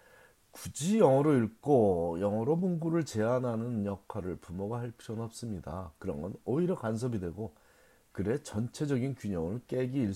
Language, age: Korean, 40-59